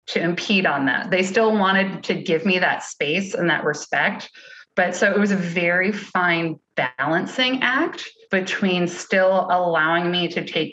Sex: female